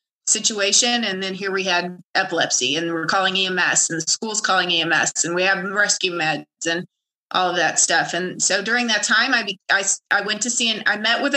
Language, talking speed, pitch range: English, 215 wpm, 210-255 Hz